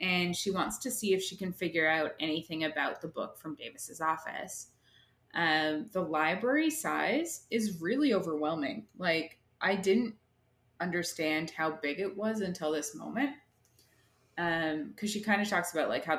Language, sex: English, female